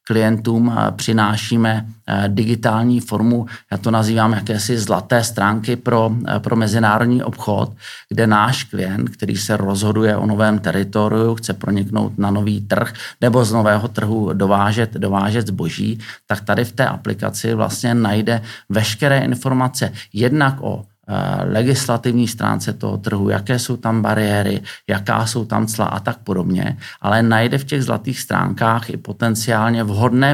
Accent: native